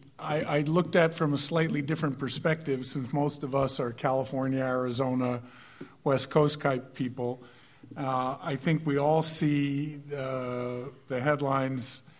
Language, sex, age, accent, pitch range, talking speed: English, male, 50-69, American, 125-140 Hz, 140 wpm